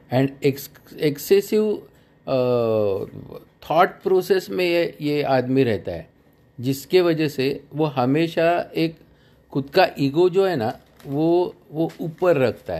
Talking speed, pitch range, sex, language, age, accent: 120 wpm, 125-160 Hz, male, Hindi, 50-69, native